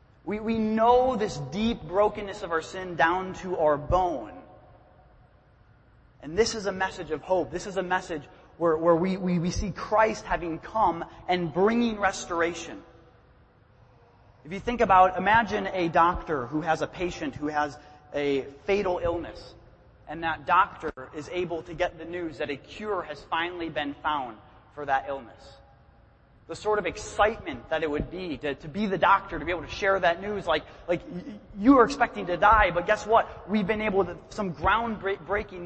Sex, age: male, 30-49